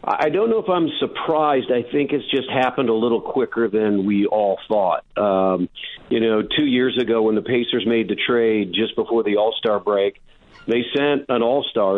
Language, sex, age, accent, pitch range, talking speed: English, male, 50-69, American, 105-120 Hz, 195 wpm